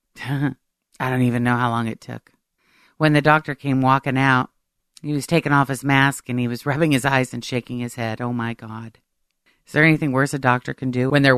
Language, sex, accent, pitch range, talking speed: English, female, American, 120-140 Hz, 225 wpm